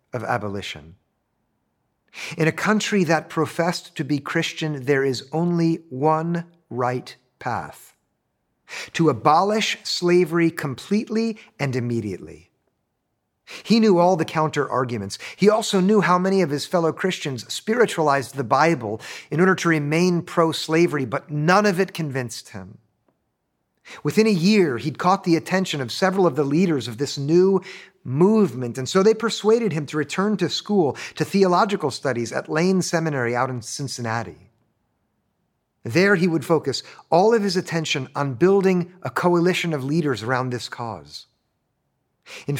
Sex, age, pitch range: male, 50-69, 135-185 Hz